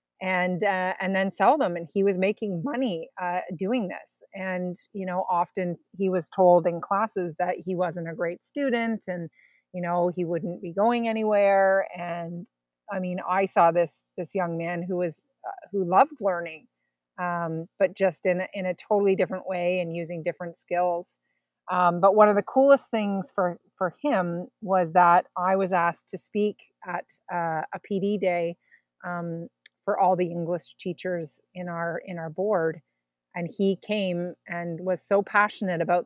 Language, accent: English, American